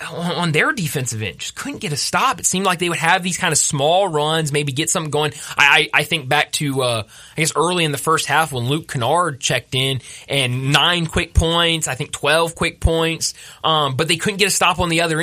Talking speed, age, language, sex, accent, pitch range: 240 wpm, 20-39, English, male, American, 140-175 Hz